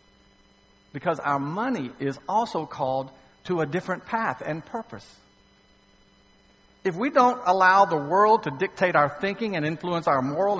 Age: 60-79